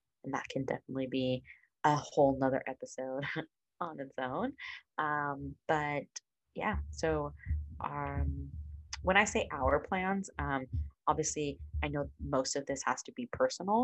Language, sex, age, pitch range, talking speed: English, female, 20-39, 130-170 Hz, 145 wpm